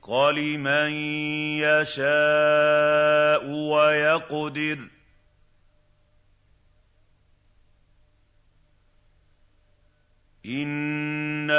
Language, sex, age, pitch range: Arabic, male, 50-69, 100-150 Hz